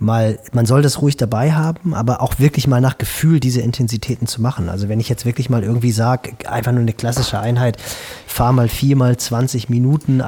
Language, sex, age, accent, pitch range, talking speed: German, male, 30-49, German, 115-135 Hz, 210 wpm